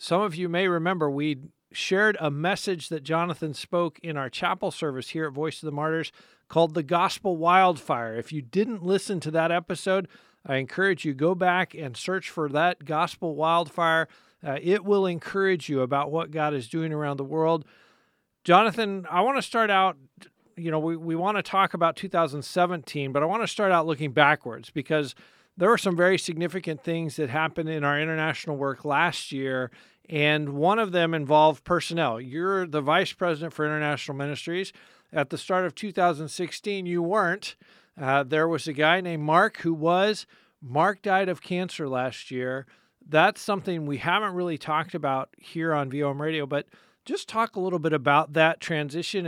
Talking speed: 180 wpm